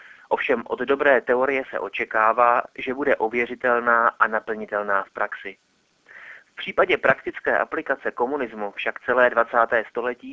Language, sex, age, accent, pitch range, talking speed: Czech, male, 30-49, native, 110-140 Hz, 130 wpm